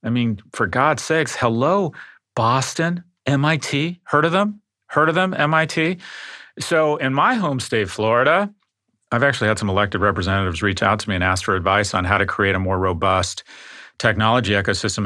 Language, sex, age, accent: English, male, 40-59, American